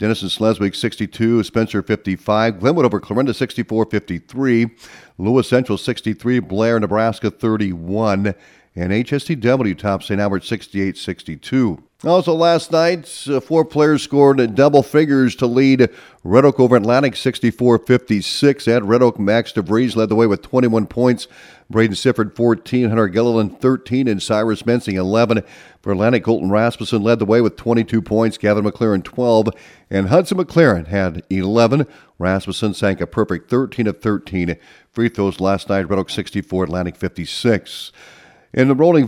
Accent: American